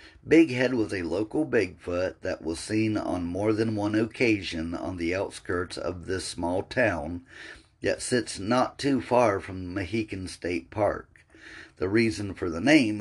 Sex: male